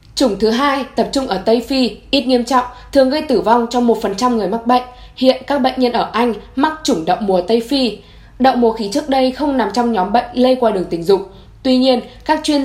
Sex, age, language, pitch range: female, 10-29, Vietnamese, 220-265 Hz